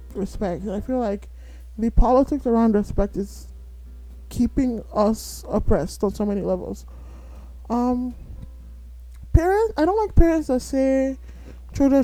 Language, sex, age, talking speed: English, male, 20-39, 125 wpm